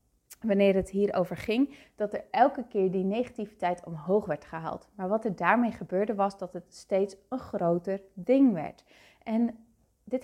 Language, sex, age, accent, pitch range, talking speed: Dutch, female, 30-49, Dutch, 185-235 Hz, 165 wpm